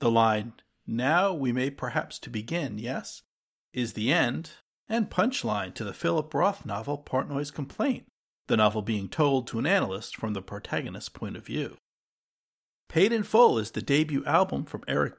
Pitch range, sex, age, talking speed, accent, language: 120-165 Hz, male, 50-69, 170 wpm, American, English